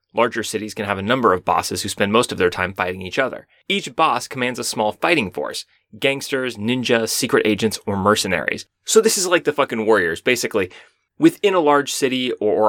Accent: American